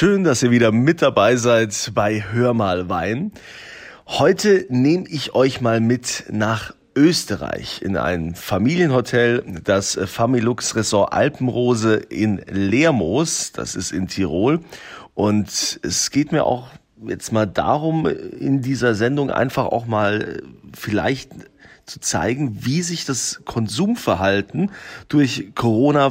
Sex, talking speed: male, 125 wpm